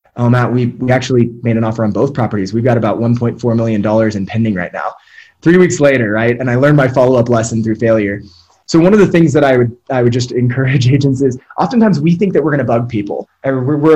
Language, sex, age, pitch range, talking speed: English, male, 20-39, 115-135 Hz, 255 wpm